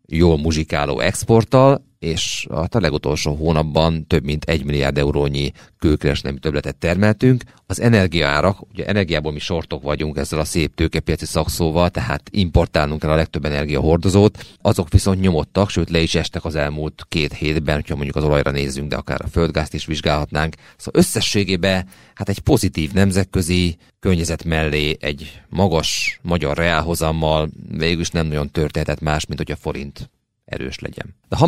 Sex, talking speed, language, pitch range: male, 155 wpm, Hungarian, 75-95 Hz